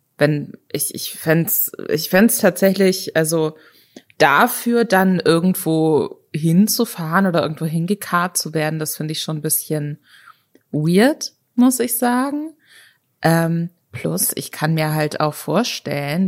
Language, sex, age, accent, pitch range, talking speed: German, female, 20-39, German, 145-185 Hz, 130 wpm